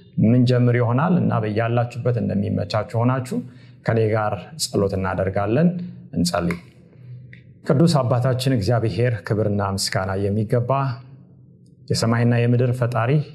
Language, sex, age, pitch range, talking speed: Amharic, male, 30-49, 105-130 Hz, 100 wpm